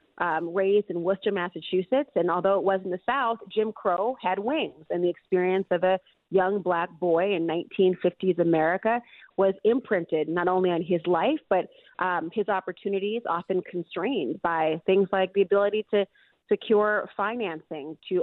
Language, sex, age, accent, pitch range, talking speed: English, female, 30-49, American, 180-205 Hz, 160 wpm